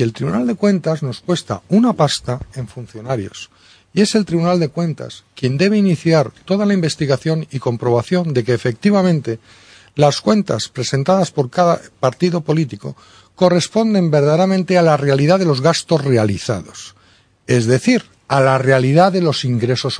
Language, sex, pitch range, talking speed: Spanish, male, 125-190 Hz, 155 wpm